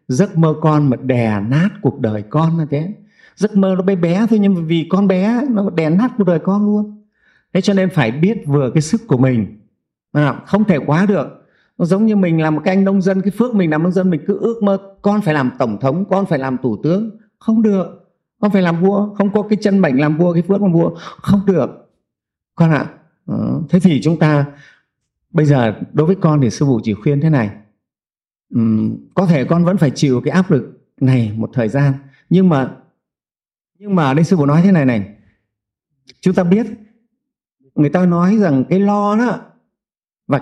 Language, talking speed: Vietnamese, 220 wpm